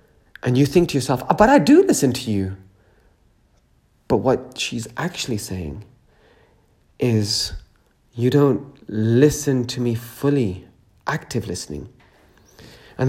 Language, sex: English, male